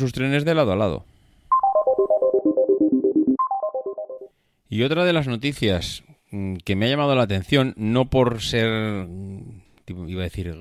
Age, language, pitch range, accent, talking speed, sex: 30-49, Spanish, 95-120 Hz, Spanish, 130 wpm, male